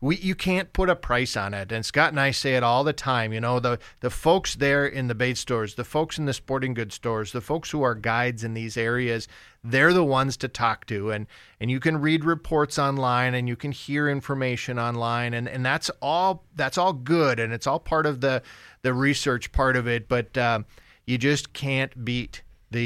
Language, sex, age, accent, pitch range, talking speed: English, male, 40-59, American, 115-140 Hz, 225 wpm